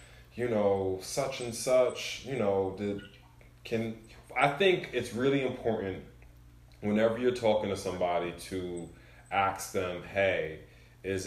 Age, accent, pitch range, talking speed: 20-39, American, 90-110 Hz, 130 wpm